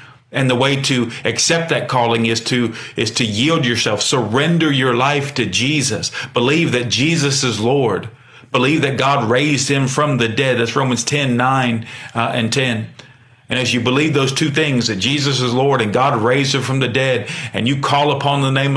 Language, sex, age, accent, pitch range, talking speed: English, male, 40-59, American, 115-135 Hz, 200 wpm